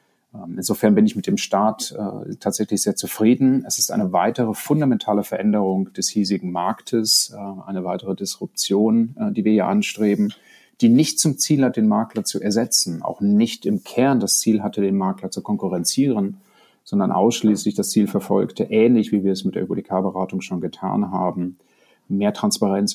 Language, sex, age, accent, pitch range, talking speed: German, male, 40-59, German, 95-120 Hz, 170 wpm